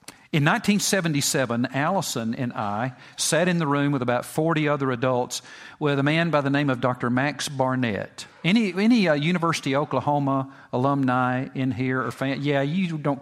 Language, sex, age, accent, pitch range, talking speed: English, male, 50-69, American, 120-150 Hz, 175 wpm